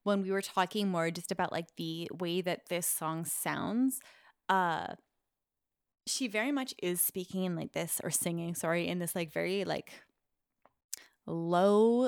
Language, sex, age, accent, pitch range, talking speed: English, female, 20-39, American, 170-205 Hz, 160 wpm